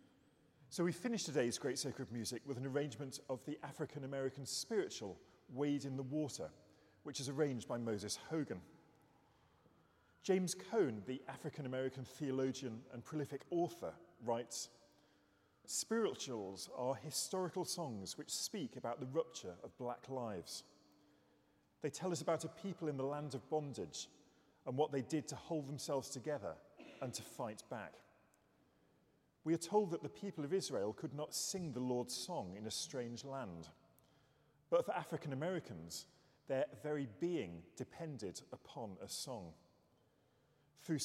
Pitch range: 125-155 Hz